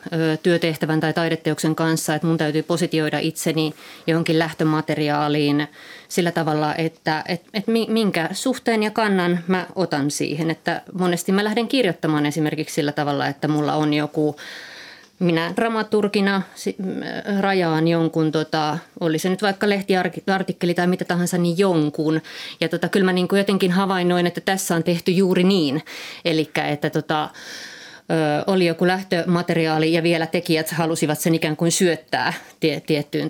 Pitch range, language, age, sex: 155-180 Hz, Finnish, 30-49, female